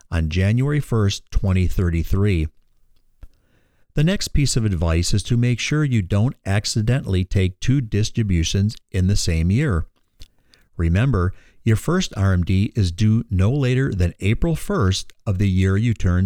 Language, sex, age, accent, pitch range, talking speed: English, male, 50-69, American, 90-120 Hz, 145 wpm